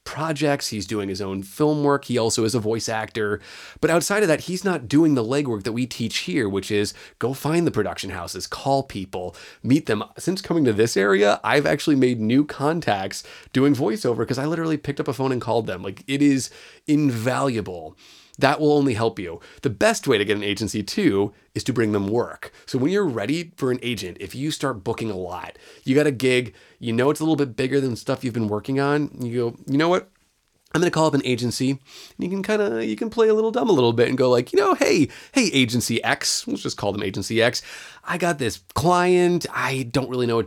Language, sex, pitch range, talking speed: English, male, 105-145 Hz, 240 wpm